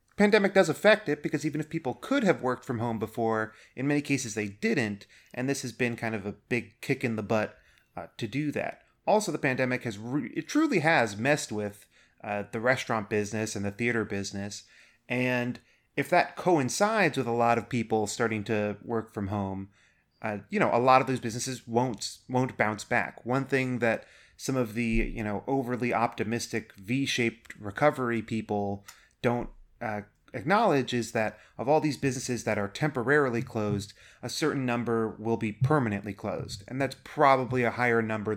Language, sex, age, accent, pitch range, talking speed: English, male, 30-49, American, 105-130 Hz, 185 wpm